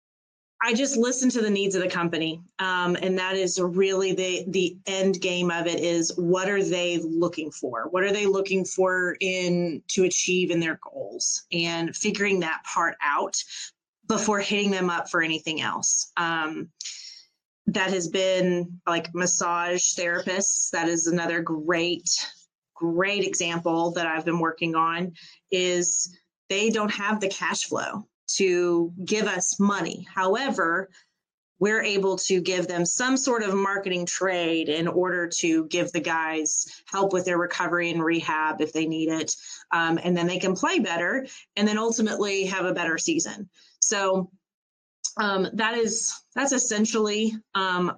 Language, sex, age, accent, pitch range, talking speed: English, female, 30-49, American, 170-195 Hz, 160 wpm